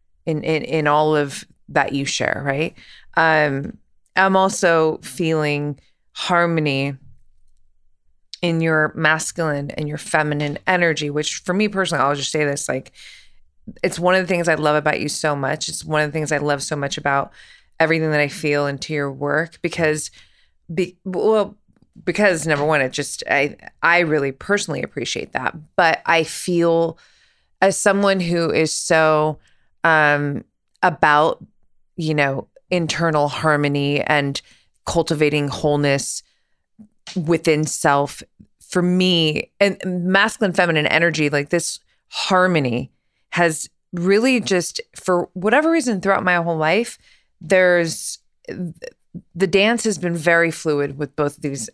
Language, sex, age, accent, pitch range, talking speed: English, female, 20-39, American, 145-180 Hz, 140 wpm